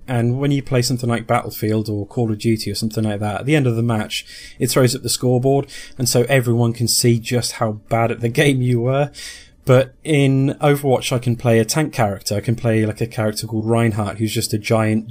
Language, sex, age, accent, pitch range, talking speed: English, male, 20-39, British, 110-120 Hz, 240 wpm